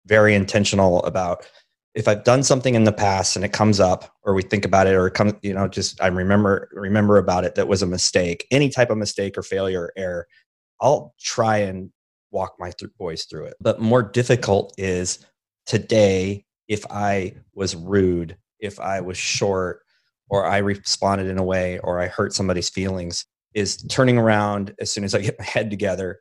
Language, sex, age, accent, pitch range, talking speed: English, male, 30-49, American, 95-110 Hz, 195 wpm